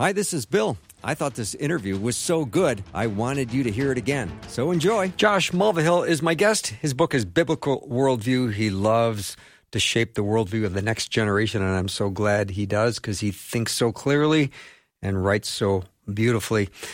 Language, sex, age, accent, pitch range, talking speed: English, male, 50-69, American, 100-130 Hz, 195 wpm